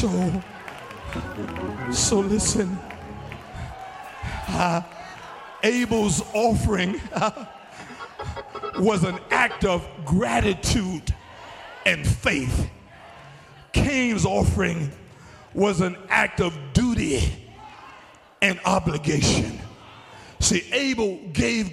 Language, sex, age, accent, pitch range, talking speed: English, male, 50-69, American, 175-230 Hz, 70 wpm